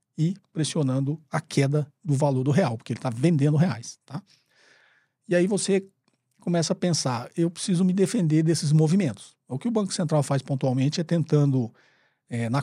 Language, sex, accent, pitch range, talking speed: Portuguese, male, Brazilian, 125-160 Hz, 165 wpm